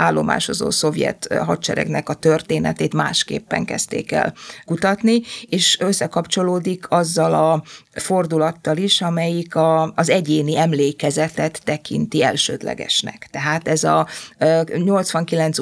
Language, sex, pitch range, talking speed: Hungarian, female, 150-175 Hz, 95 wpm